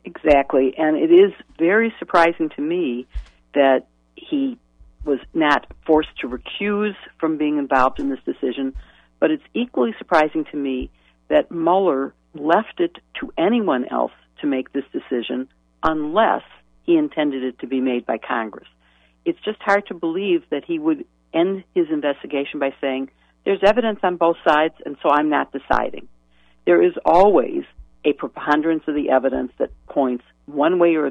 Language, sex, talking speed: English, female, 160 wpm